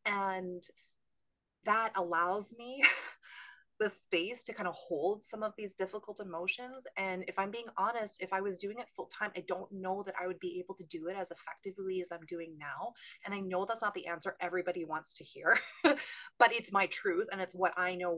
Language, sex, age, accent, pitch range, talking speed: English, female, 30-49, American, 170-210 Hz, 210 wpm